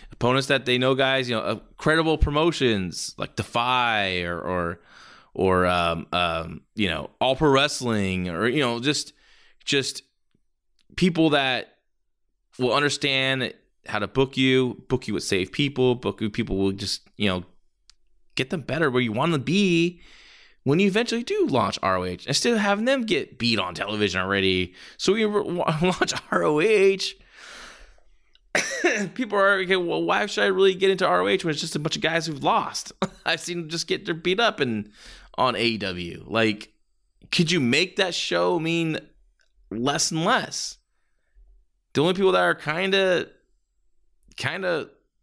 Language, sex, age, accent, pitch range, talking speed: English, male, 20-39, American, 110-185 Hz, 170 wpm